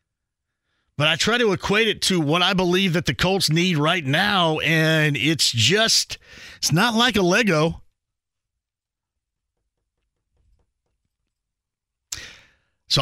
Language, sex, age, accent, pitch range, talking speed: English, male, 50-69, American, 105-165 Hz, 115 wpm